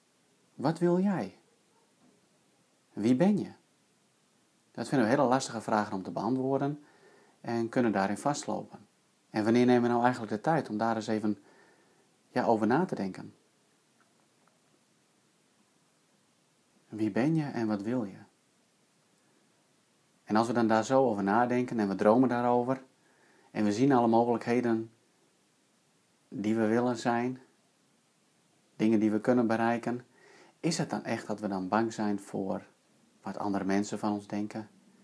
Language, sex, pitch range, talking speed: Dutch, male, 110-130 Hz, 145 wpm